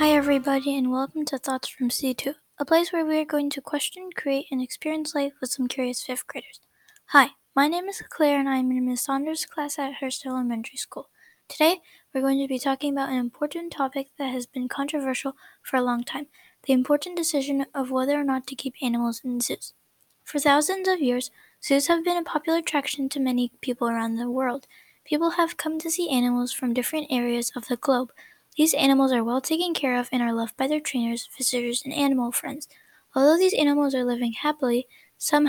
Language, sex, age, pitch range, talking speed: English, female, 10-29, 250-300 Hz, 210 wpm